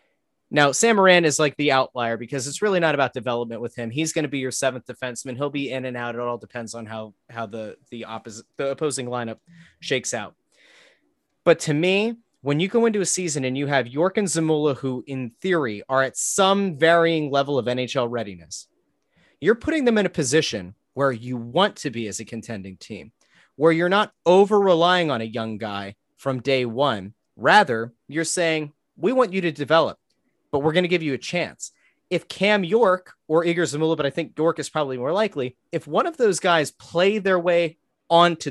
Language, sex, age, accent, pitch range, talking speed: English, male, 30-49, American, 130-185 Hz, 205 wpm